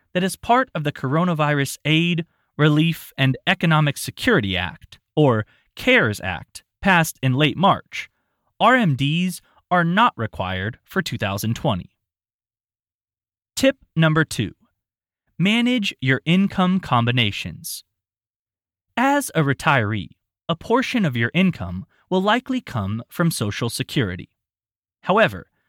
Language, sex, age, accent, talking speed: English, male, 20-39, American, 110 wpm